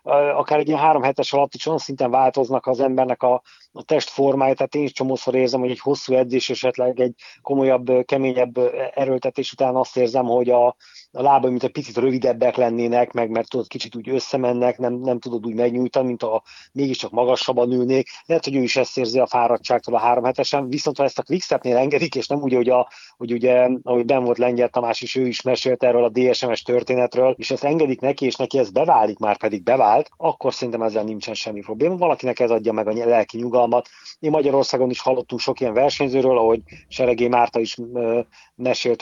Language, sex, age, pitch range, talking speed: Hungarian, male, 30-49, 120-130 Hz, 195 wpm